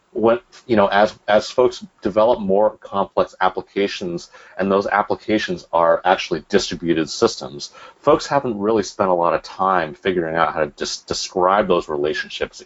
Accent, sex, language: American, male, English